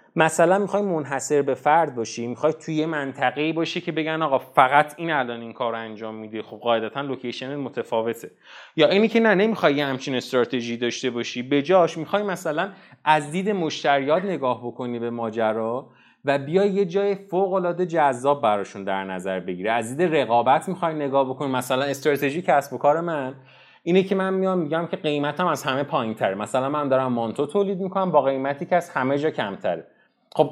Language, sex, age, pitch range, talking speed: Persian, male, 30-49, 120-170 Hz, 175 wpm